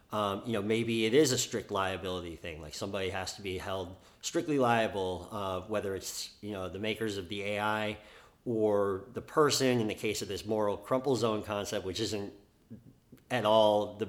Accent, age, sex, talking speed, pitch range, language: American, 40-59, male, 190 wpm, 100-115 Hz, English